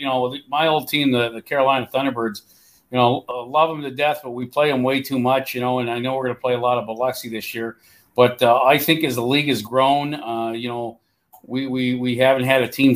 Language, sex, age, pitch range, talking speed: English, male, 40-59, 115-135 Hz, 265 wpm